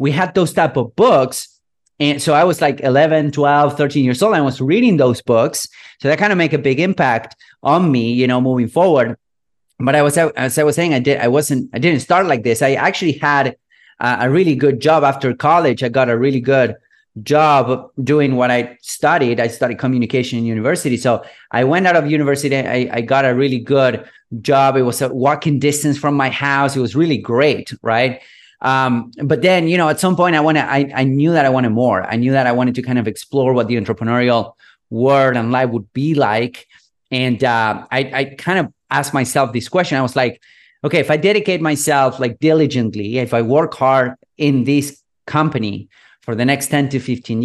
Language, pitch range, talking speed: English, 125-150 Hz, 215 wpm